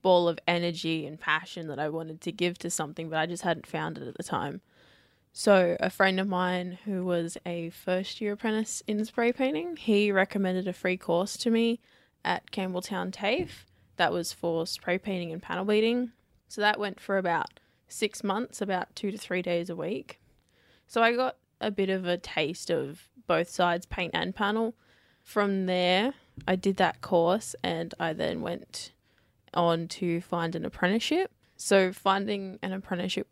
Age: 10-29